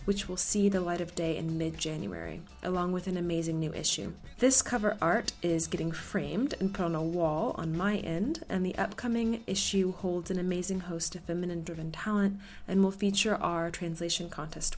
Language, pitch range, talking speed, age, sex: English, 165-200 Hz, 185 wpm, 20-39, female